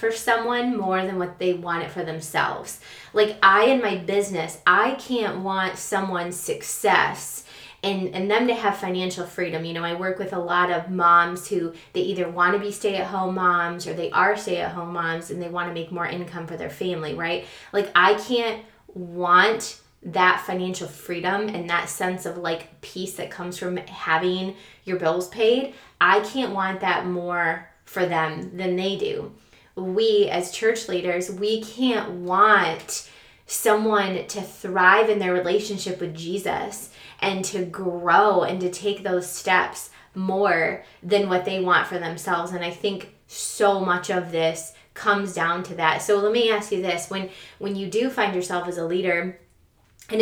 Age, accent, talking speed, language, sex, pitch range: 20-39, American, 180 wpm, English, female, 175-200 Hz